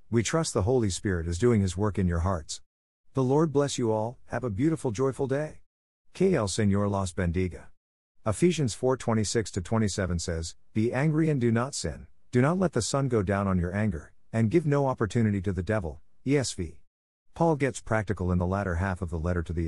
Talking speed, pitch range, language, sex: 205 wpm, 90-120 Hz, English, male